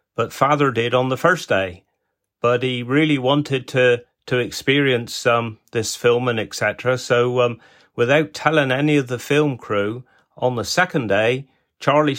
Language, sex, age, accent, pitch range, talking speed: English, male, 40-59, British, 120-145 Hz, 160 wpm